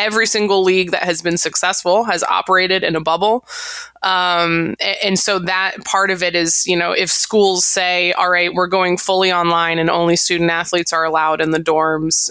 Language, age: English, 20-39